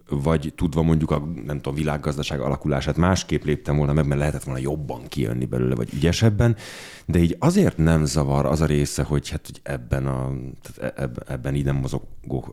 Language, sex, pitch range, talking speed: Hungarian, male, 75-95 Hz, 170 wpm